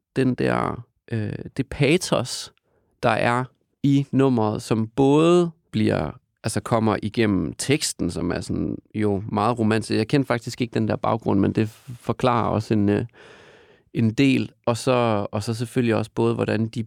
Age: 30-49